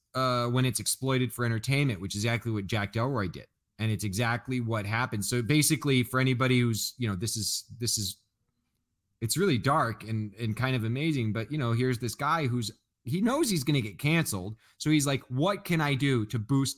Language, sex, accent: English, male, American